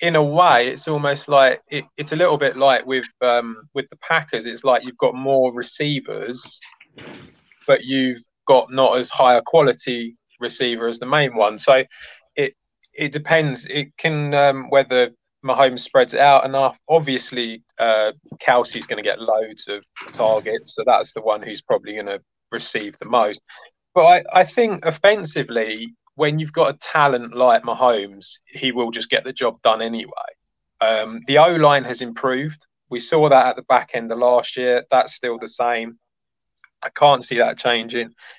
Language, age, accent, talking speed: English, 20-39, British, 175 wpm